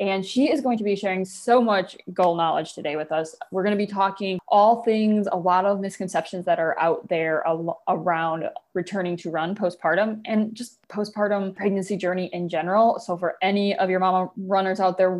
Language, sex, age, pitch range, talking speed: English, female, 20-39, 175-210 Hz, 195 wpm